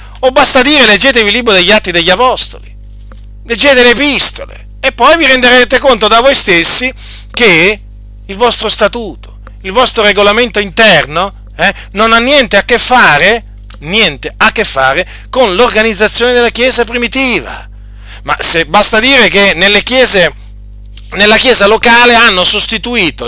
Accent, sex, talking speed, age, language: native, male, 145 wpm, 40-59, Italian